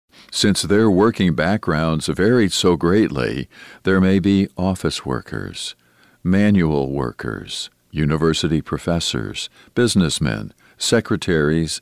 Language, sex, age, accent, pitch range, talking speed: English, male, 50-69, American, 75-100 Hz, 90 wpm